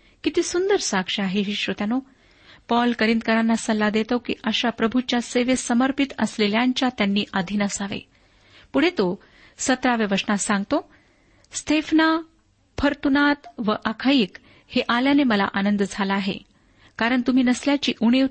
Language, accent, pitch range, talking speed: Marathi, native, 205-265 Hz, 115 wpm